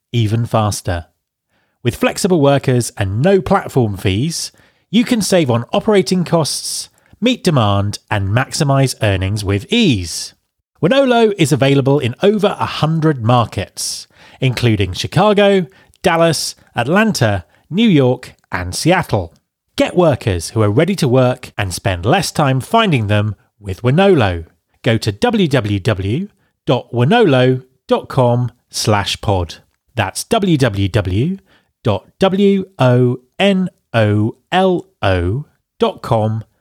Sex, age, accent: male, 30-49, British